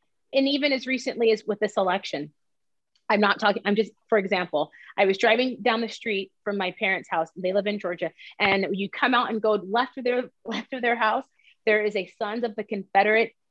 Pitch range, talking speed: 195-255 Hz, 220 wpm